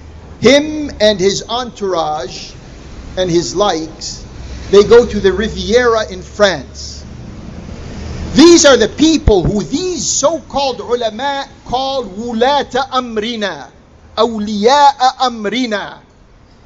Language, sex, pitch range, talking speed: English, male, 200-255 Hz, 95 wpm